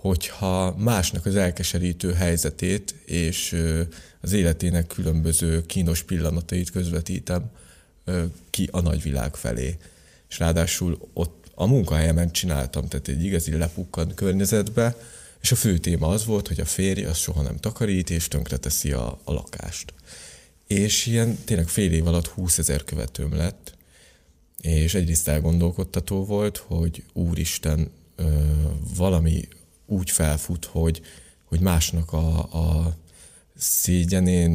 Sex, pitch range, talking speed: male, 80-95 Hz, 120 wpm